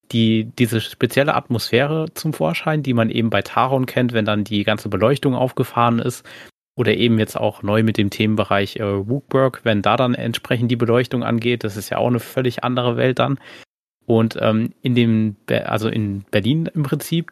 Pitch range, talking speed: 110-130 Hz, 185 wpm